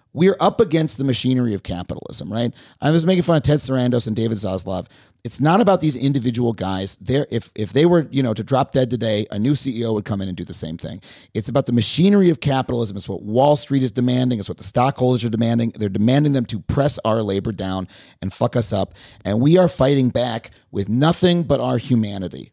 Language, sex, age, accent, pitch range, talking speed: English, male, 30-49, American, 110-140 Hz, 230 wpm